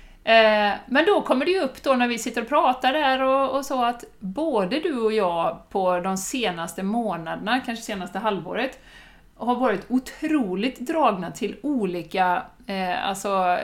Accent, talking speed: native, 165 wpm